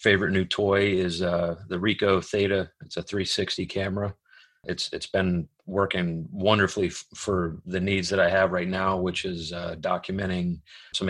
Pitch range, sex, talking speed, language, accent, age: 85-100 Hz, male, 170 wpm, English, American, 30-49